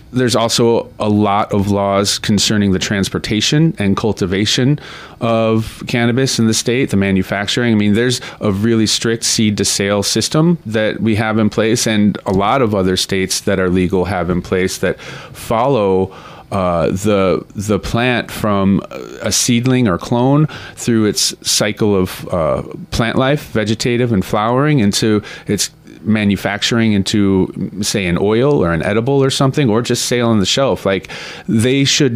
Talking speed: 160 wpm